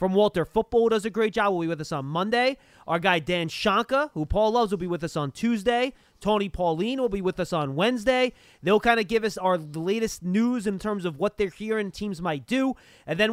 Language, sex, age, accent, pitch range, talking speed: English, male, 30-49, American, 160-215 Hz, 240 wpm